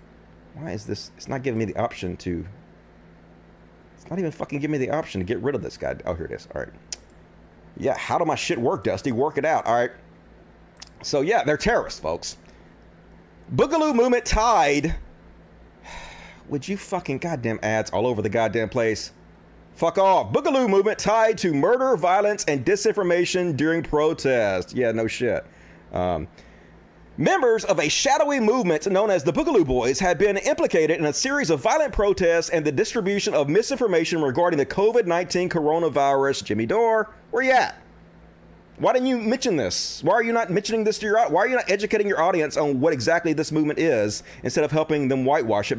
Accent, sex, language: American, male, English